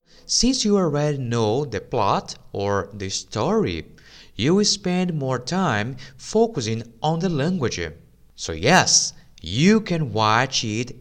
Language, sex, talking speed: English, male, 130 wpm